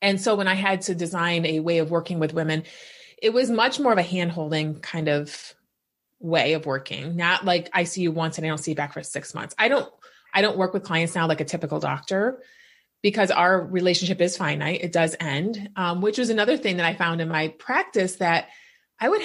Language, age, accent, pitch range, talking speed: English, 30-49, American, 170-215 Hz, 235 wpm